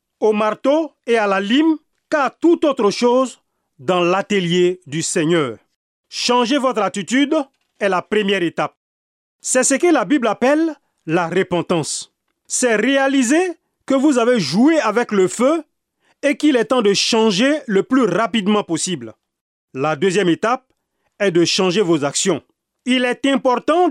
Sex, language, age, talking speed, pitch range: male, French, 40-59, 150 wpm, 190-270 Hz